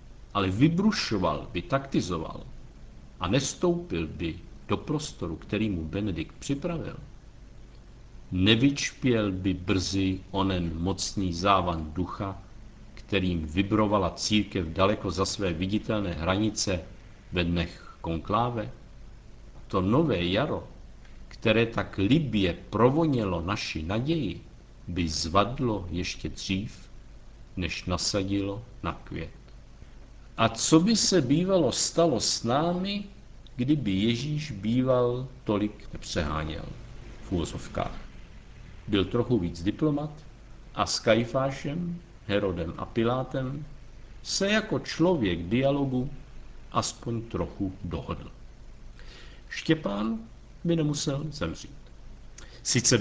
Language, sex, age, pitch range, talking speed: Czech, male, 50-69, 95-130 Hz, 95 wpm